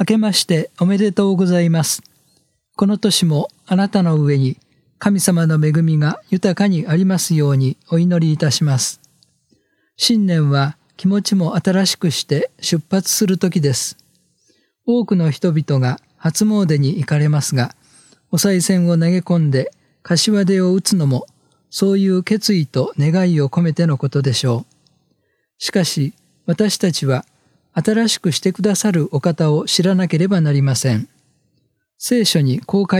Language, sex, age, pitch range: Japanese, male, 40-59, 145-190 Hz